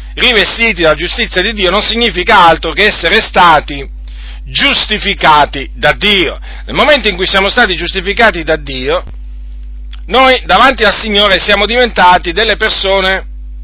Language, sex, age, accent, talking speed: Italian, male, 40-59, native, 135 wpm